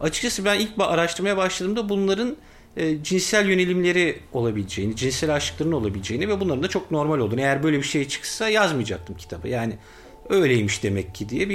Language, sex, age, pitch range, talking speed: Turkish, male, 50-69, 115-185 Hz, 160 wpm